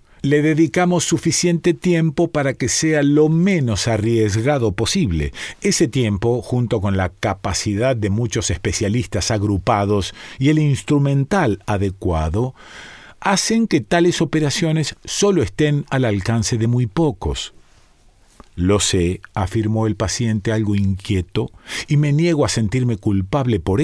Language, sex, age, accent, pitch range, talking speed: Spanish, male, 40-59, Argentinian, 105-150 Hz, 125 wpm